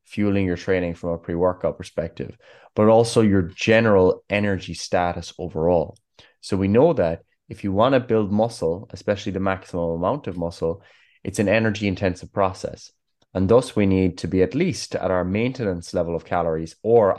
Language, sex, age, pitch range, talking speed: English, male, 20-39, 90-110 Hz, 170 wpm